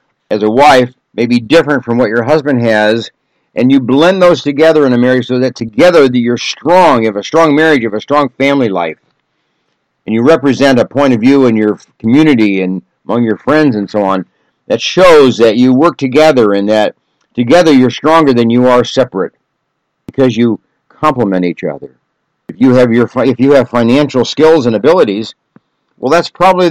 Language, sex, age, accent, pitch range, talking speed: English, male, 60-79, American, 115-145 Hz, 195 wpm